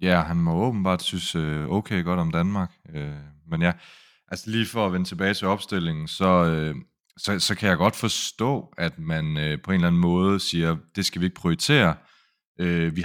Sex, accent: male, native